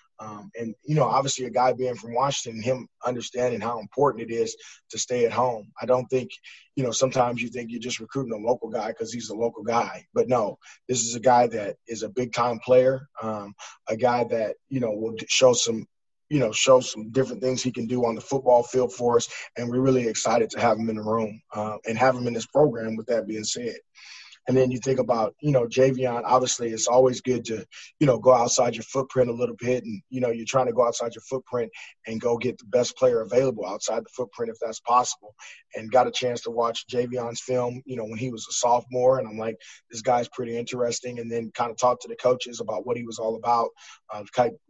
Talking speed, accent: 240 wpm, American